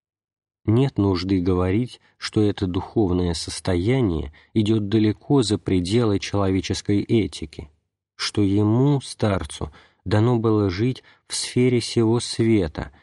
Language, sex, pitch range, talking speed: Russian, male, 95-115 Hz, 105 wpm